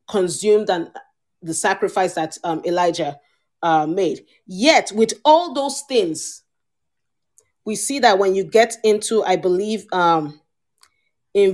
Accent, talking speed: Nigerian, 130 wpm